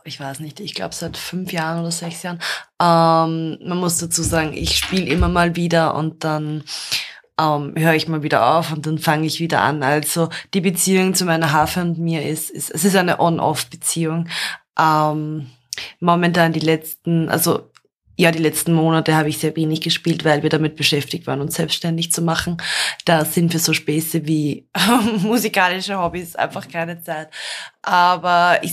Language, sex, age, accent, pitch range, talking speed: German, female, 20-39, German, 150-170 Hz, 180 wpm